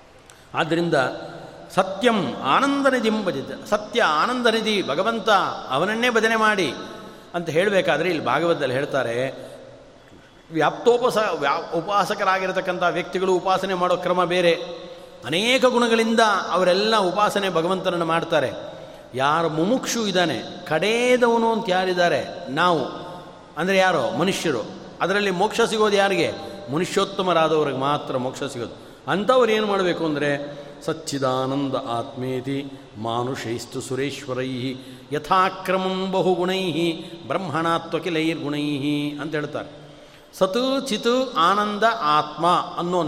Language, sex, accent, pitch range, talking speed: Kannada, male, native, 145-195 Hz, 95 wpm